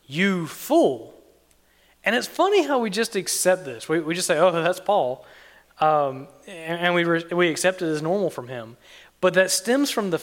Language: English